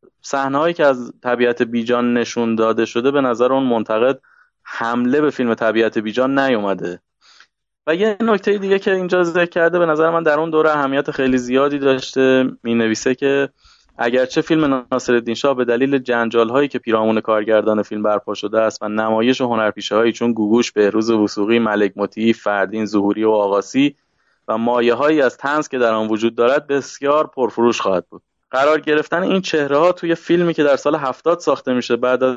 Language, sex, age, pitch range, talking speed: Persian, male, 20-39, 110-150 Hz, 180 wpm